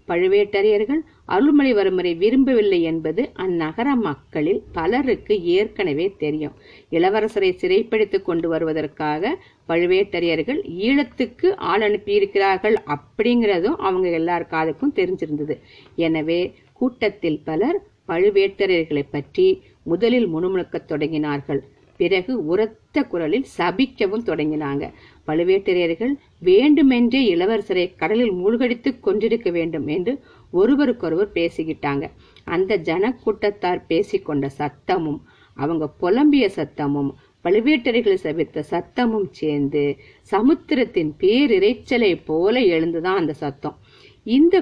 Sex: female